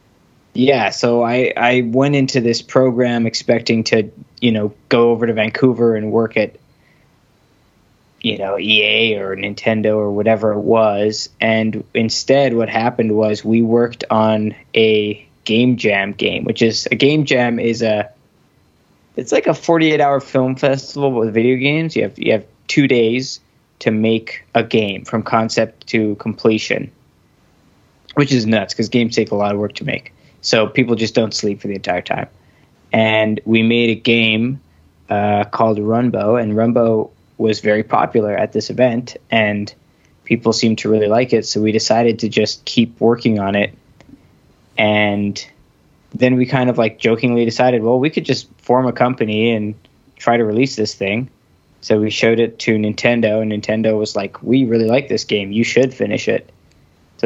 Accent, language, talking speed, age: American, English, 175 wpm, 20-39